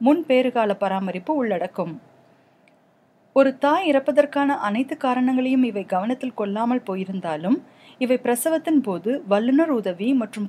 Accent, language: native, Tamil